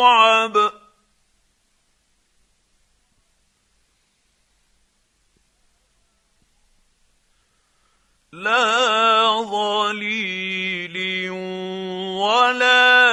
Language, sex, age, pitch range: Arabic, male, 50-69, 185-225 Hz